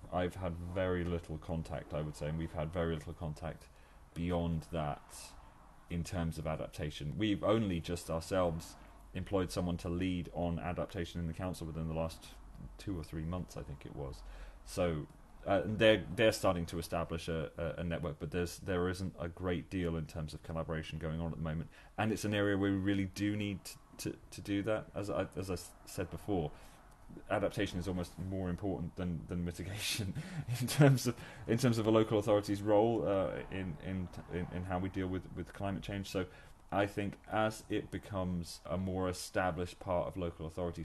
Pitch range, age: 80-95 Hz, 30-49